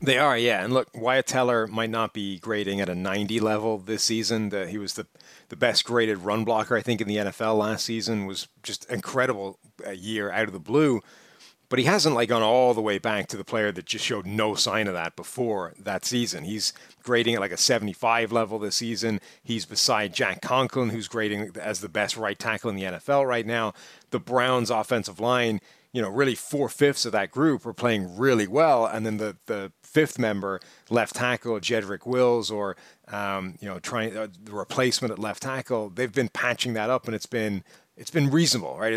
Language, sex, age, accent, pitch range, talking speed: English, male, 30-49, American, 105-125 Hz, 210 wpm